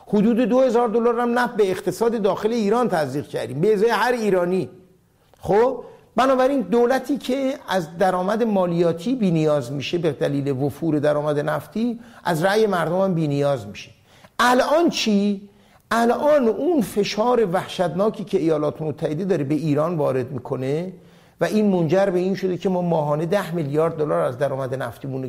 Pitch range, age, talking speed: 155-225 Hz, 50-69, 150 wpm